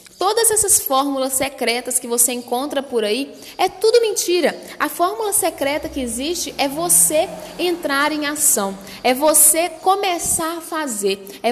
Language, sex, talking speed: Portuguese, female, 145 wpm